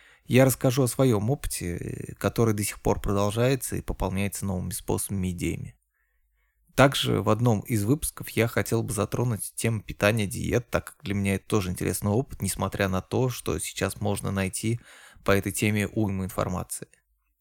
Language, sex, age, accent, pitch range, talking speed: Russian, male, 20-39, native, 95-120 Hz, 165 wpm